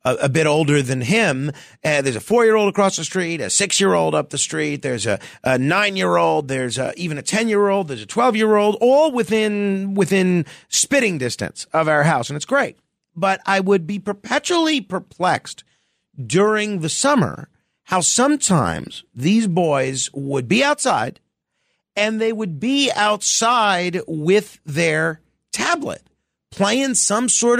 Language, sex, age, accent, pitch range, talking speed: English, male, 40-59, American, 150-215 Hz, 150 wpm